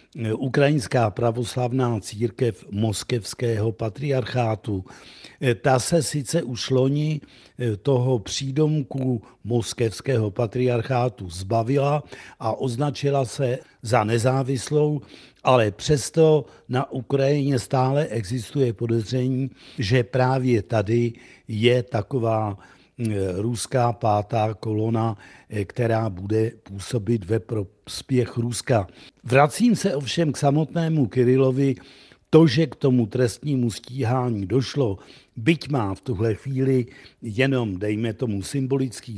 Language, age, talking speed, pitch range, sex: Czech, 60-79, 95 wpm, 110-135 Hz, male